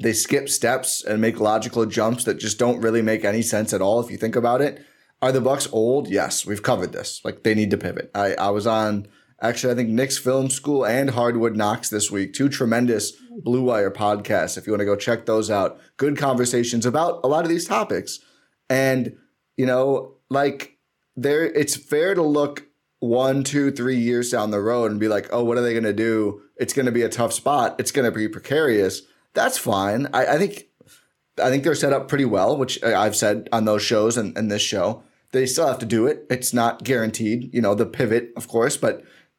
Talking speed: 220 wpm